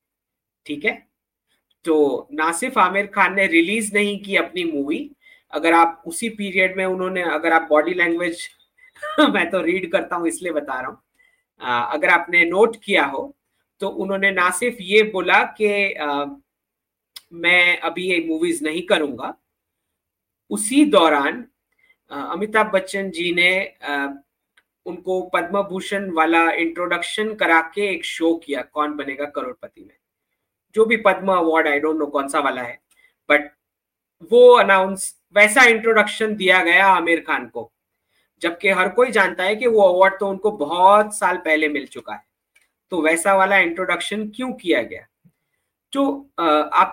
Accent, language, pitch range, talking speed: Indian, English, 160-210 Hz, 130 wpm